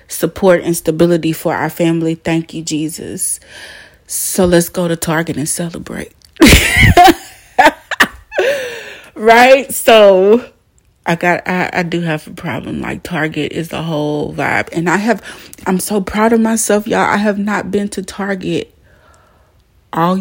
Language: English